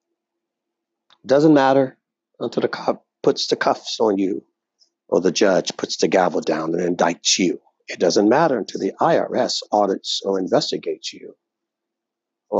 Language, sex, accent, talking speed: English, male, American, 150 wpm